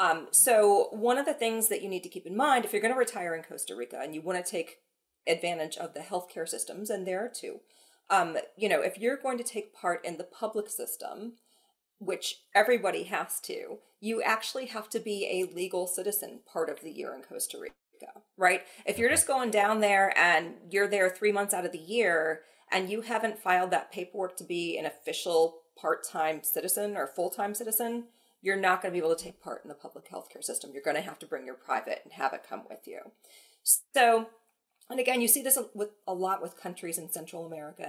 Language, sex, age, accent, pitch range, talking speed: English, female, 40-59, American, 170-230 Hz, 215 wpm